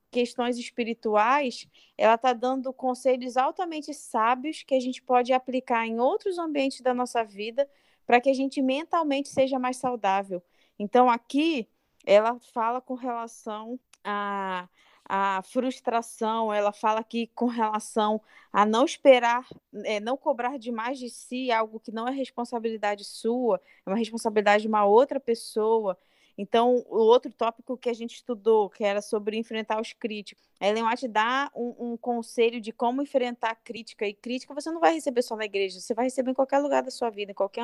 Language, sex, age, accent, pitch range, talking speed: Portuguese, female, 20-39, Brazilian, 220-260 Hz, 170 wpm